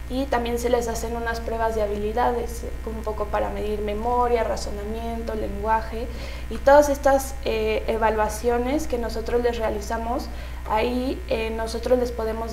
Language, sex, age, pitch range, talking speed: Spanish, female, 20-39, 210-235 Hz, 150 wpm